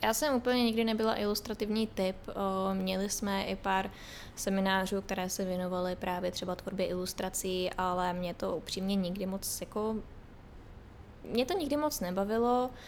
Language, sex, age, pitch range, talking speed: Czech, female, 20-39, 180-210 Hz, 155 wpm